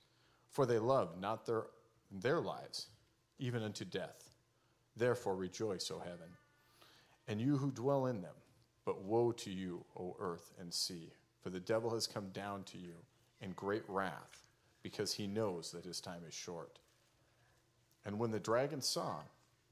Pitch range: 100-120 Hz